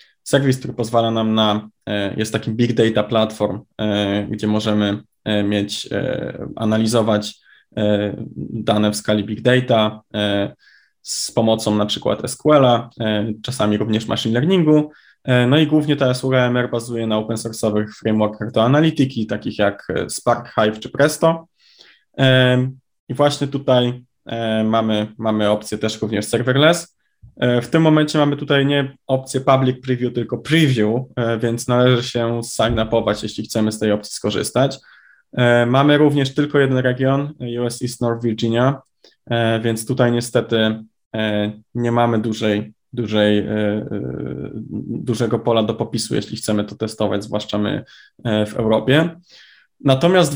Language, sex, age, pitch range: Polish, male, 20-39, 110-130 Hz